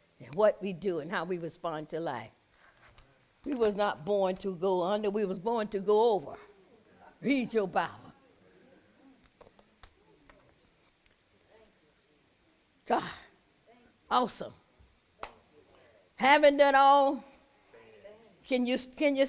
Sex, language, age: female, English, 60-79